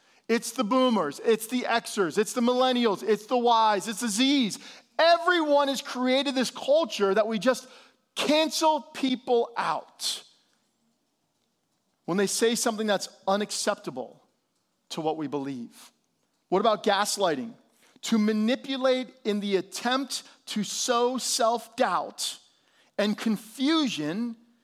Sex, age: male, 40-59